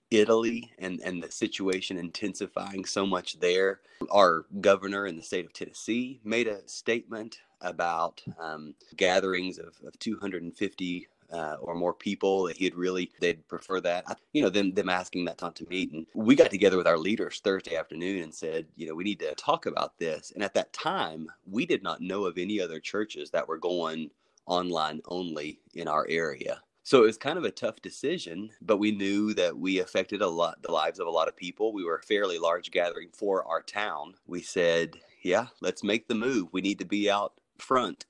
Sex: male